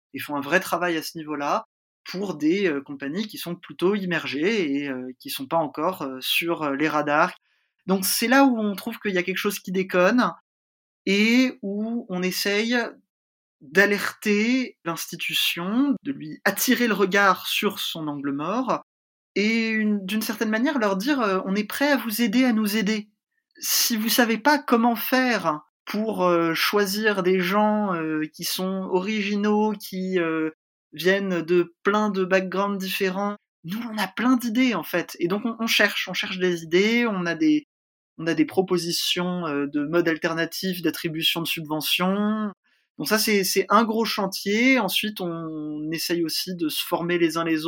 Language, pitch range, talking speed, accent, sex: French, 165-215 Hz, 175 wpm, French, male